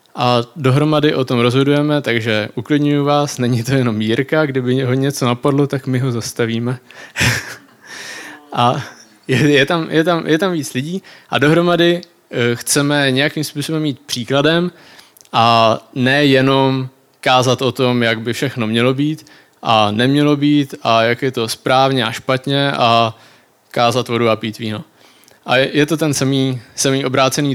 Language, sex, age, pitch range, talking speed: Czech, male, 20-39, 125-150 Hz, 150 wpm